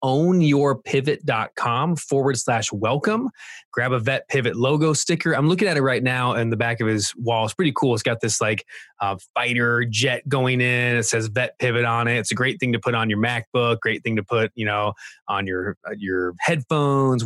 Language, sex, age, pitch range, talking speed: English, male, 20-39, 115-135 Hz, 205 wpm